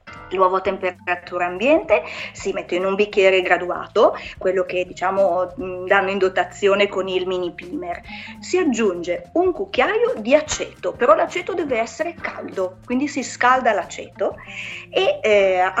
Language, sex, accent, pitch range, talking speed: Italian, female, native, 185-255 Hz, 140 wpm